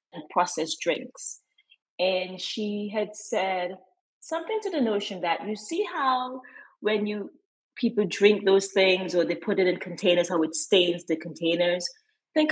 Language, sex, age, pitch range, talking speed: English, female, 30-49, 180-255 Hz, 155 wpm